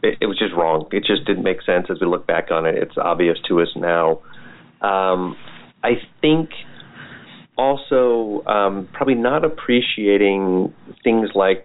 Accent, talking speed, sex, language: American, 155 wpm, male, English